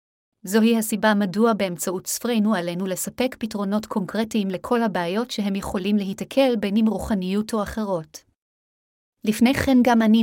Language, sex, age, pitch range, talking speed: Hebrew, female, 30-49, 195-230 Hz, 135 wpm